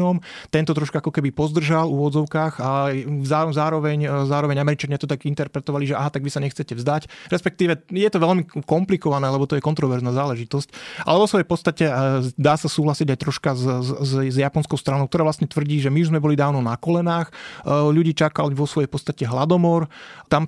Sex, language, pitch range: male, Slovak, 135-160 Hz